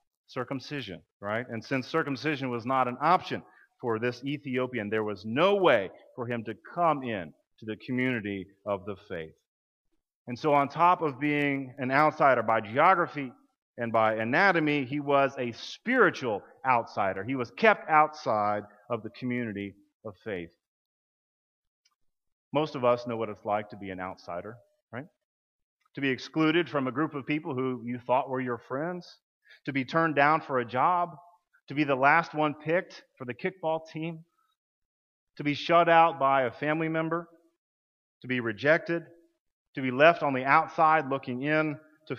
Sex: male